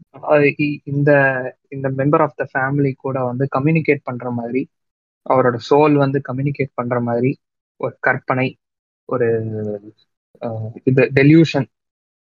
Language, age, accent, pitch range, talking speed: Tamil, 20-39, native, 125-155 Hz, 105 wpm